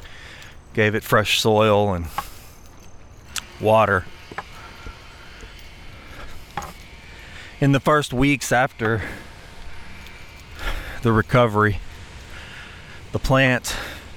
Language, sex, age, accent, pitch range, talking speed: English, male, 30-49, American, 95-115 Hz, 65 wpm